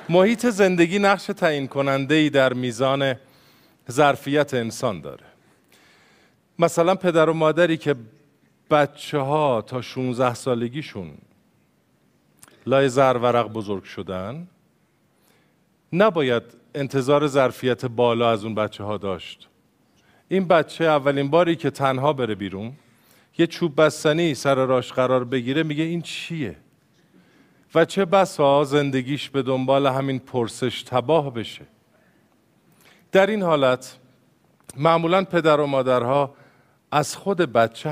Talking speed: 115 wpm